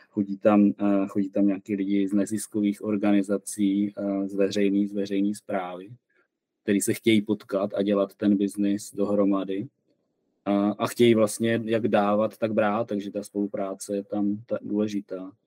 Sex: male